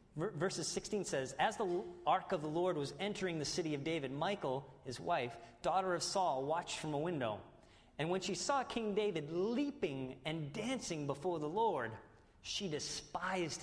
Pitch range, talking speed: 120-185 Hz, 170 wpm